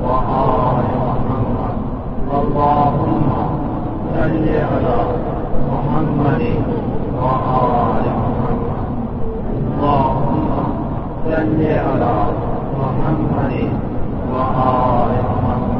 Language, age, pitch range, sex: English, 50-69, 125-145 Hz, male